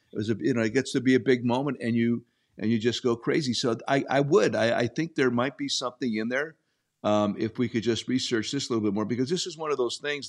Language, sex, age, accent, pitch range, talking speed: English, male, 50-69, American, 110-140 Hz, 290 wpm